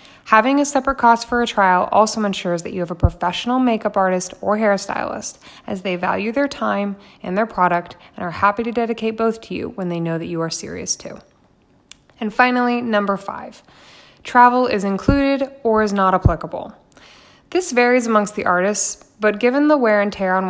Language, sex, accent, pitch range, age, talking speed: English, female, American, 190-240 Hz, 20-39, 190 wpm